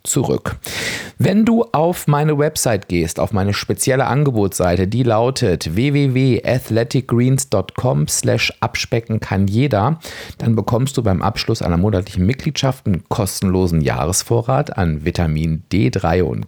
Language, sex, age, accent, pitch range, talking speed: German, male, 40-59, German, 95-140 Hz, 115 wpm